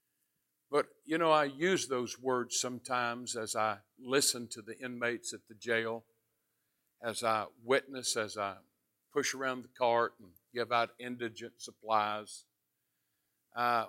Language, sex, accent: English, male, American